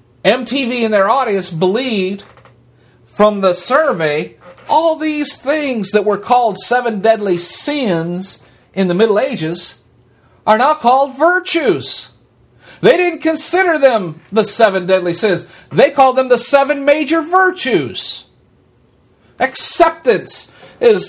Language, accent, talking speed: English, American, 120 wpm